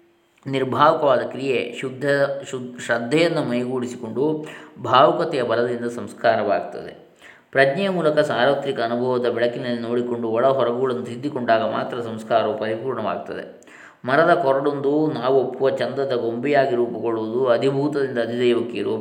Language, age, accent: Kannada, 20-39, native